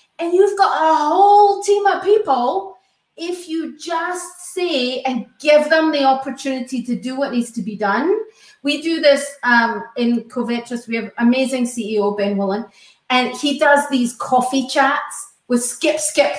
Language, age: English, 30-49